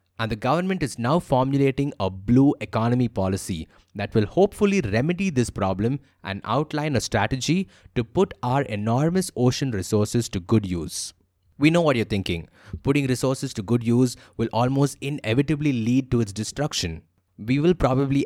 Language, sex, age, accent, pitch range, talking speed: English, male, 20-39, Indian, 100-135 Hz, 160 wpm